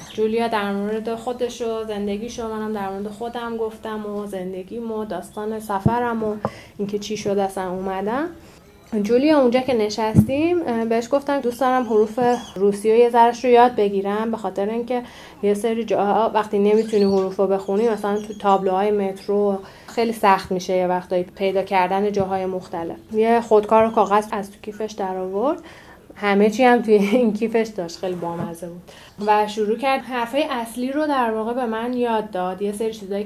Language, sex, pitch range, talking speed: Persian, female, 185-225 Hz, 160 wpm